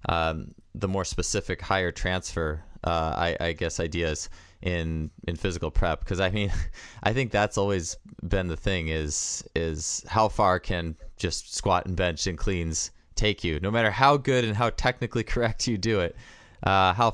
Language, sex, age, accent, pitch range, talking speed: English, male, 20-39, American, 85-110 Hz, 180 wpm